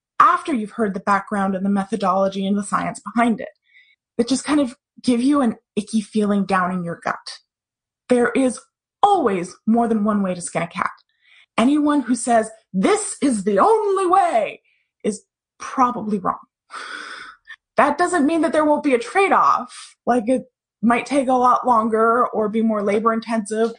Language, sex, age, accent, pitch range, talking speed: English, female, 20-39, American, 205-260 Hz, 170 wpm